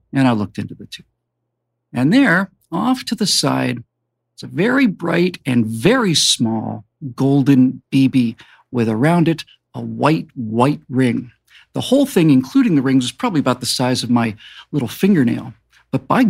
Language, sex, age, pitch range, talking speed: English, male, 50-69, 125-170 Hz, 165 wpm